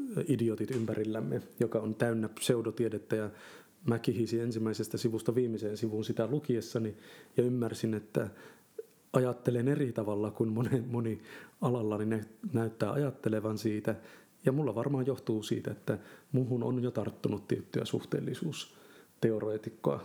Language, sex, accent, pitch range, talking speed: Finnish, male, native, 110-125 Hz, 115 wpm